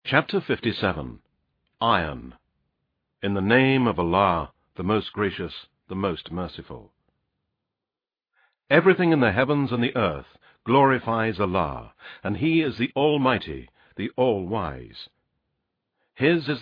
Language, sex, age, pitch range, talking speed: English, male, 60-79, 100-135 Hz, 115 wpm